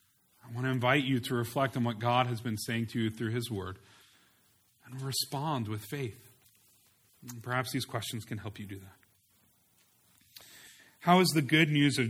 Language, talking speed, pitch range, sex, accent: English, 180 wpm, 110-130 Hz, male, American